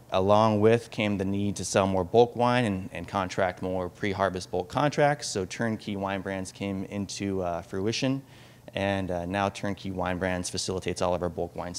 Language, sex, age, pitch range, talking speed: English, male, 20-39, 95-115 Hz, 190 wpm